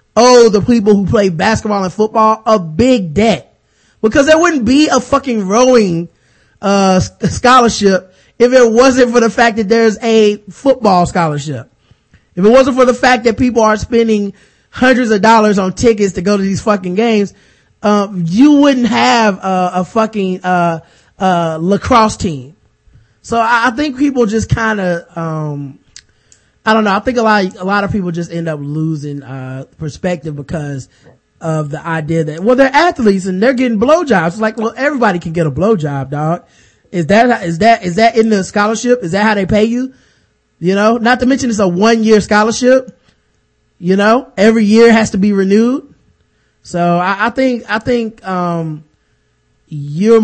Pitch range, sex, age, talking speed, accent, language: 170-230 Hz, male, 20-39, 185 wpm, American, English